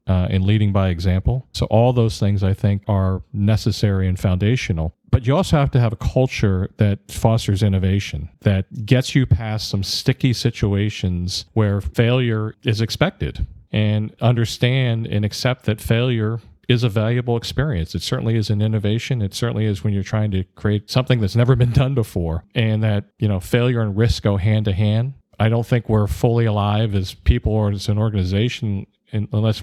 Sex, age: male, 40-59